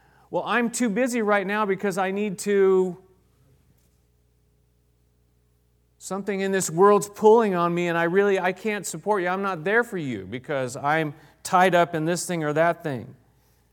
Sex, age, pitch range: male, 40-59, 115-175 Hz